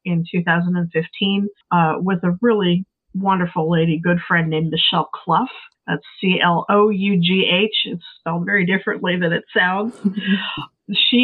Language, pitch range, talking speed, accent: English, 170-195 Hz, 125 wpm, American